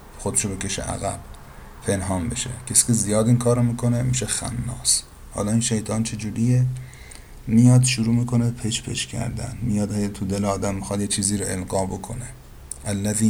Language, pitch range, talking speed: Persian, 95-115 Hz, 155 wpm